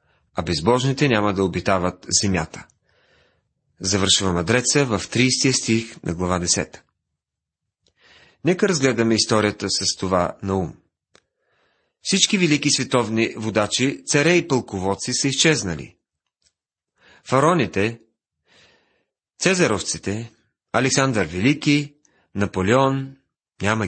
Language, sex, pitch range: Bulgarian, male, 100-145 Hz